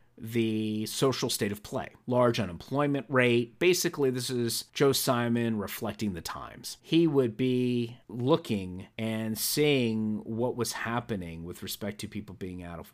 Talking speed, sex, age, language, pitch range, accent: 150 wpm, male, 30-49, English, 105-125 Hz, American